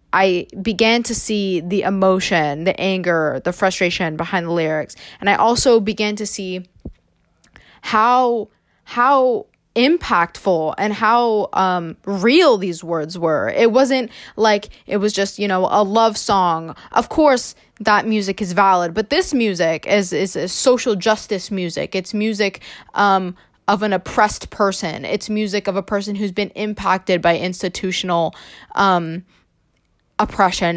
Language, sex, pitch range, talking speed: English, female, 180-215 Hz, 145 wpm